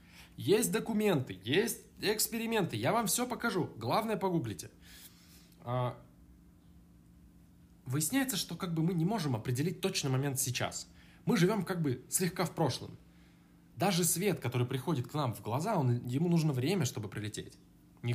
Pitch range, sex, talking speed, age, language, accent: 115-165 Hz, male, 140 wpm, 20-39, Russian, native